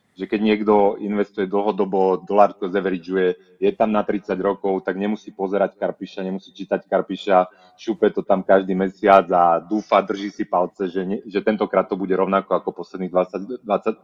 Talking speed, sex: 170 wpm, male